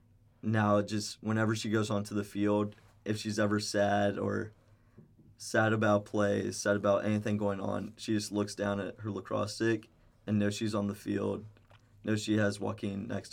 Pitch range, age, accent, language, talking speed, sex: 105-110 Hz, 20-39, American, English, 180 wpm, male